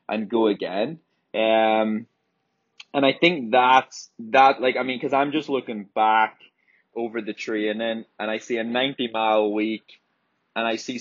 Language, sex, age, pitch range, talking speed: English, male, 20-39, 110-125 Hz, 170 wpm